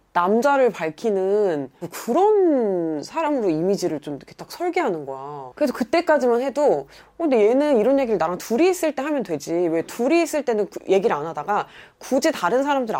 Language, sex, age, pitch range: Korean, female, 20-39, 175-290 Hz